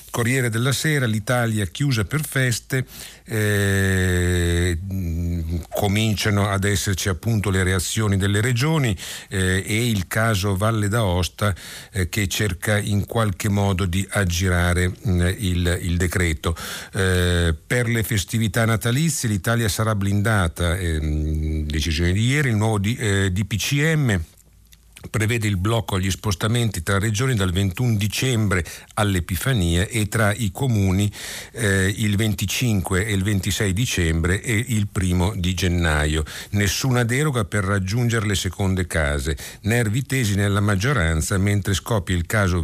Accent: native